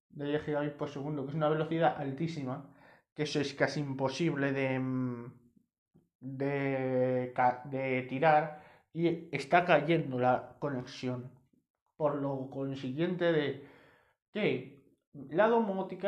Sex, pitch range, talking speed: male, 140-180 Hz, 110 wpm